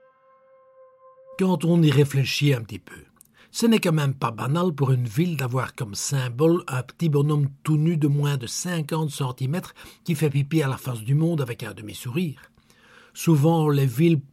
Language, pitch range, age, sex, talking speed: French, 110-155 Hz, 60-79, male, 180 wpm